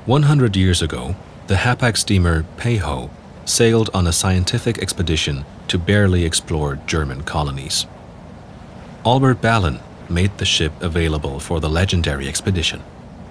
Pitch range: 80-105 Hz